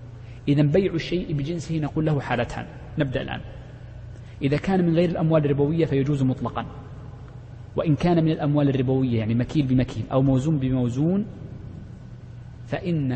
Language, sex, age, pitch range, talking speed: Arabic, male, 30-49, 115-150 Hz, 130 wpm